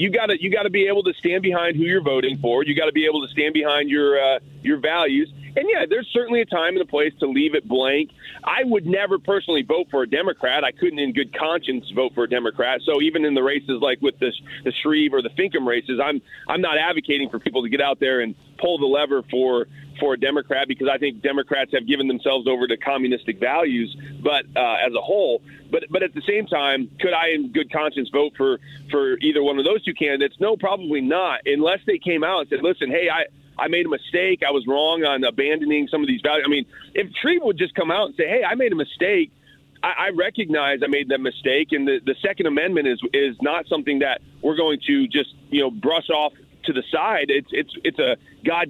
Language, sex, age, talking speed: English, male, 40-59, 245 wpm